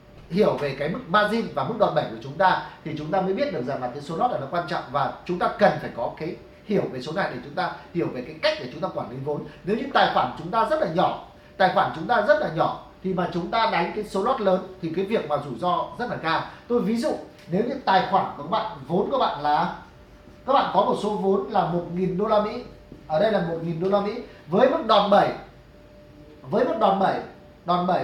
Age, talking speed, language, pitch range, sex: 30-49, 285 wpm, English, 180-225 Hz, male